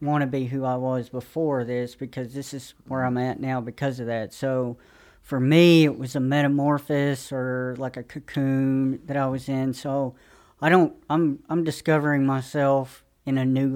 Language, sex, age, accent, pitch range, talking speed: English, female, 40-59, American, 130-145 Hz, 190 wpm